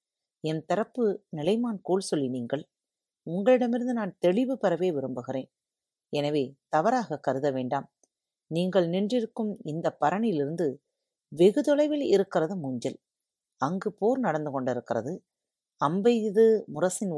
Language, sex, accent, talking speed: Tamil, female, native, 105 wpm